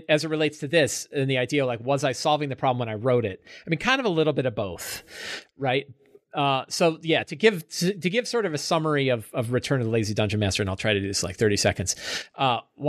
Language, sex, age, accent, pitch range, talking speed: English, male, 40-59, American, 110-145 Hz, 275 wpm